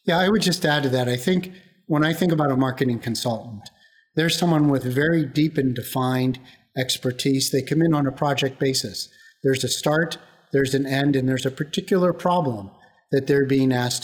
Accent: American